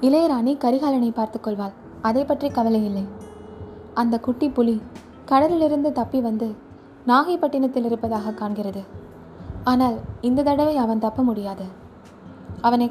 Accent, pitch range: native, 220-265 Hz